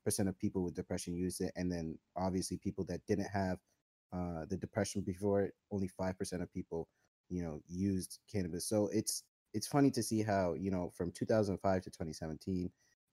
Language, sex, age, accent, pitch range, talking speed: English, male, 20-39, American, 90-105 Hz, 185 wpm